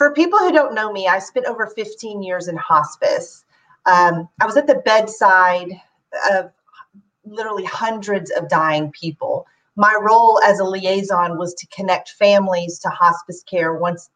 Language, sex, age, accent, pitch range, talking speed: English, female, 40-59, American, 170-210 Hz, 160 wpm